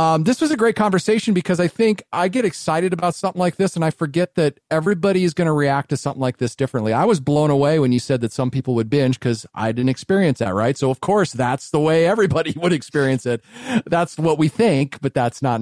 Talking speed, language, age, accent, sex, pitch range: 250 wpm, English, 40-59, American, male, 125-175 Hz